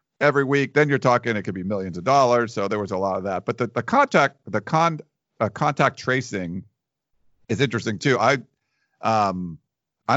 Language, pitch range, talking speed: English, 105-125 Hz, 195 wpm